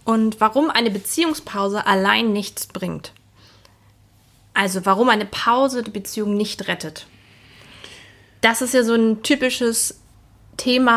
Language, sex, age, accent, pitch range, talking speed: German, female, 20-39, German, 175-215 Hz, 120 wpm